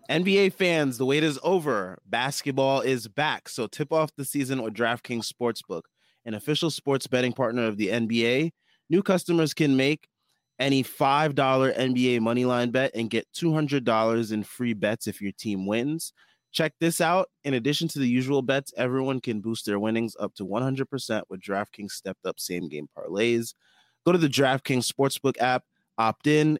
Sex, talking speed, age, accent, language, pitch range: male, 165 wpm, 20-39, American, English, 110-140 Hz